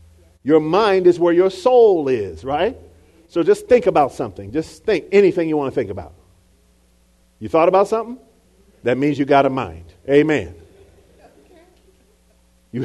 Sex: male